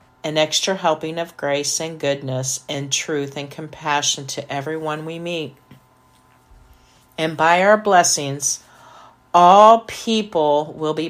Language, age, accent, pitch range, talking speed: English, 40-59, American, 140-180 Hz, 125 wpm